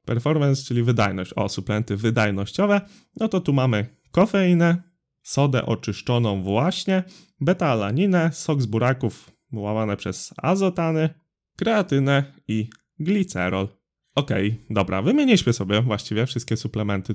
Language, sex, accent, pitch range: Polish, male, native, 110-155 Hz